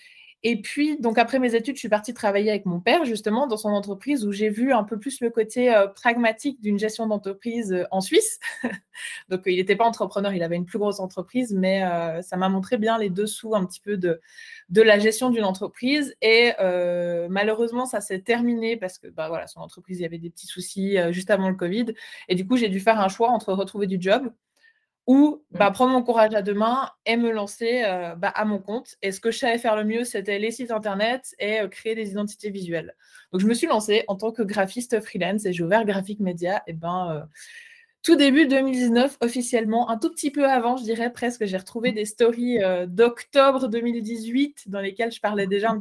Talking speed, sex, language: 230 wpm, female, French